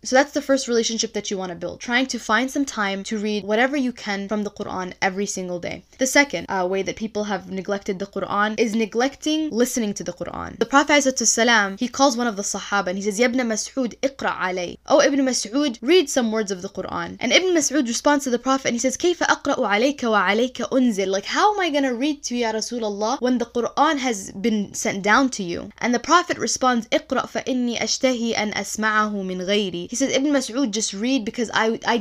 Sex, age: female, 10-29